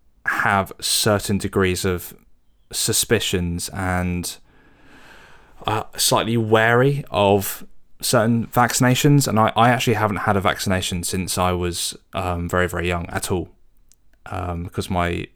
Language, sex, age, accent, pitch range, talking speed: English, male, 20-39, British, 90-100 Hz, 125 wpm